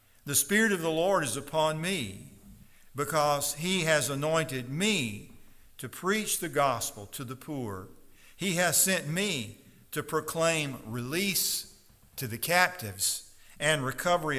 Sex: male